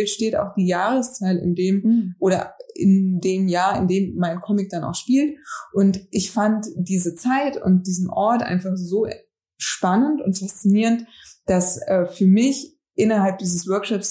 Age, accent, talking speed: 20-39, German, 155 wpm